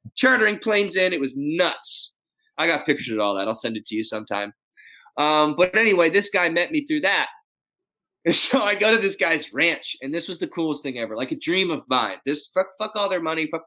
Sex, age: male, 20-39